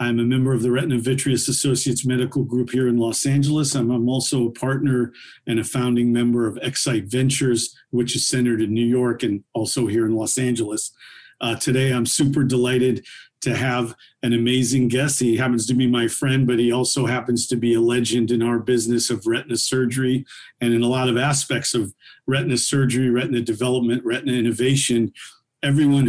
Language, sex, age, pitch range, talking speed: English, male, 50-69, 120-135 Hz, 185 wpm